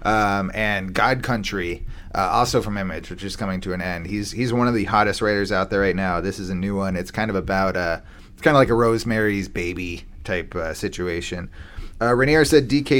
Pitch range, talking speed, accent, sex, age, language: 95-130 Hz, 225 wpm, American, male, 30-49, English